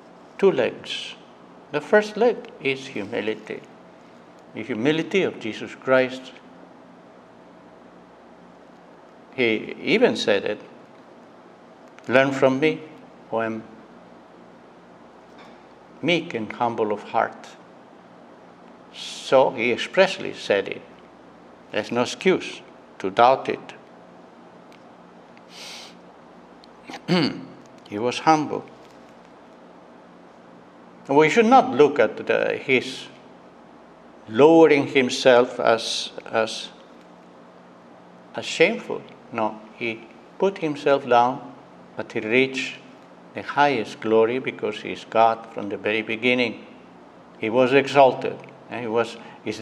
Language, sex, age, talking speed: English, male, 60-79, 95 wpm